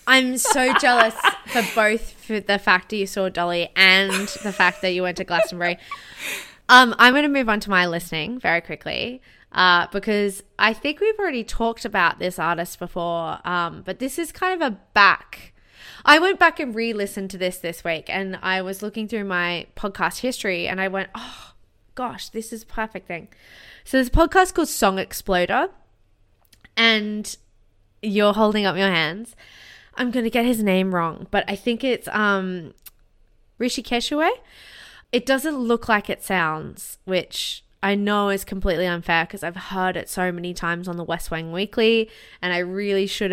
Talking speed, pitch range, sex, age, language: 185 wpm, 180-230 Hz, female, 20-39, English